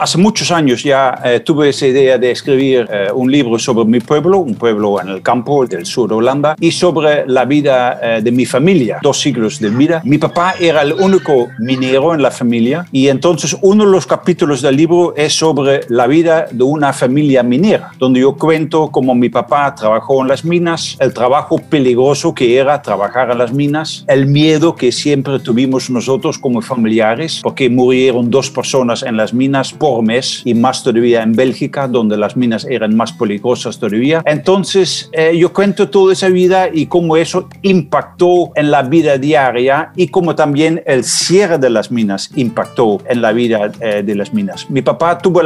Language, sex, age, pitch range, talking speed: Spanish, male, 50-69, 125-160 Hz, 190 wpm